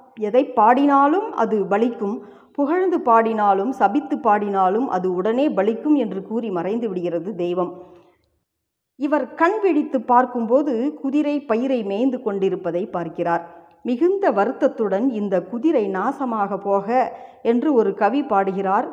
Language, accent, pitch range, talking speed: Tamil, native, 195-255 Hz, 110 wpm